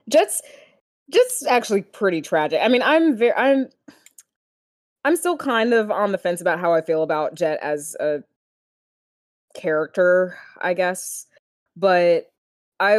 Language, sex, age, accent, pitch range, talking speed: English, female, 20-39, American, 150-200 Hz, 140 wpm